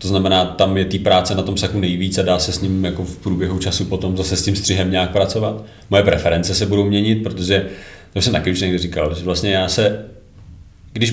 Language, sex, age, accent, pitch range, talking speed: Czech, male, 30-49, native, 95-110 Hz, 230 wpm